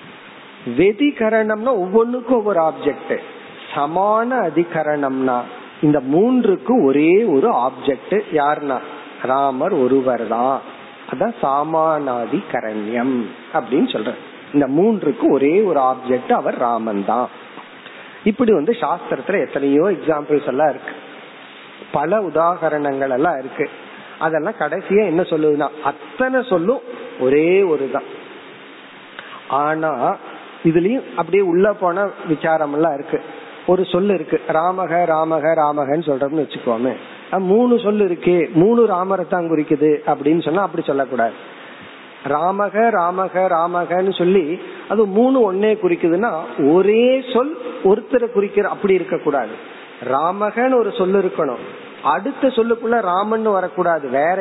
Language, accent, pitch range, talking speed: Tamil, native, 150-215 Hz, 85 wpm